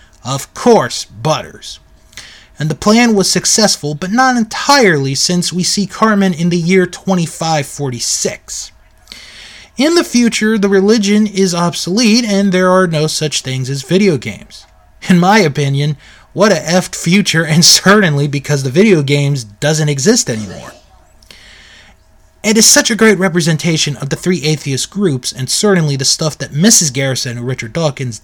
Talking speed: 155 wpm